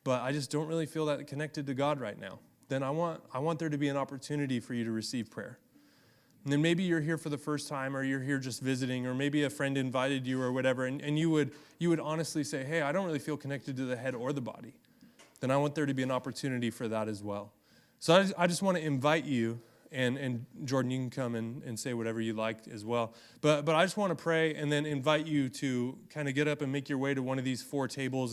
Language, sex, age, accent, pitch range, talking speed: English, male, 20-39, American, 125-150 Hz, 275 wpm